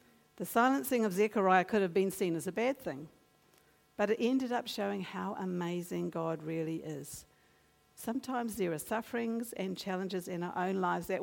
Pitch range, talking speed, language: 165-220 Hz, 175 wpm, English